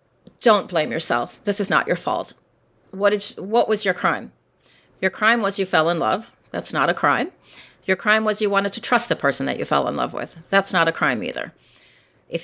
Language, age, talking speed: English, 40-59, 225 wpm